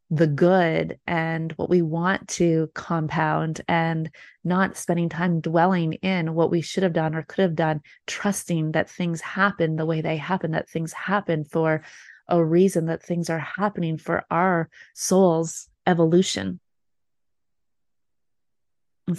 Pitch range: 165-180 Hz